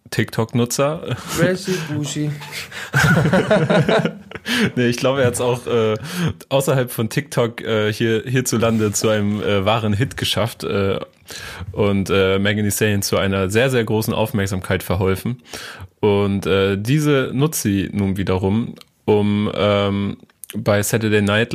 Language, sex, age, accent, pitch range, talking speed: German, male, 20-39, German, 100-125 Hz, 125 wpm